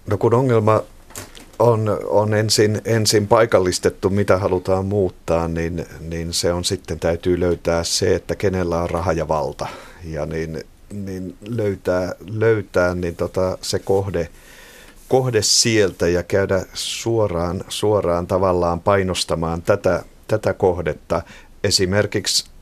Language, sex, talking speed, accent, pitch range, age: Finnish, male, 120 wpm, native, 85-100 Hz, 50-69